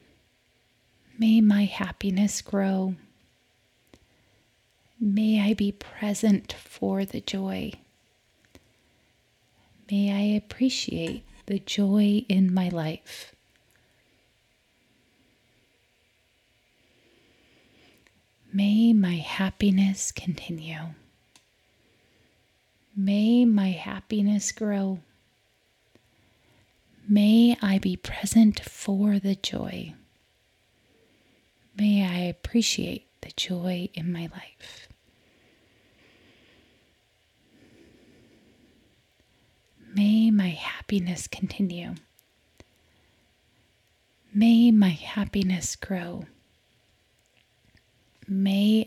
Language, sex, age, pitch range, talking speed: English, female, 30-49, 165-205 Hz, 65 wpm